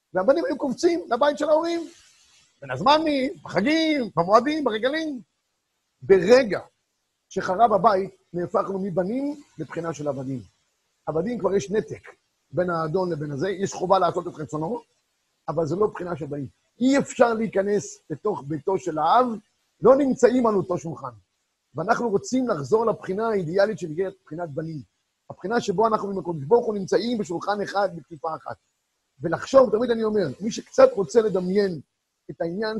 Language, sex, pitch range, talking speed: Hebrew, male, 175-250 Hz, 140 wpm